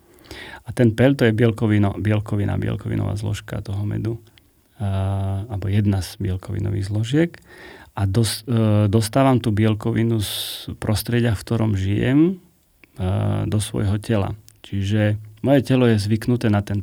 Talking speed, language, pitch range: 140 wpm, Slovak, 100-115 Hz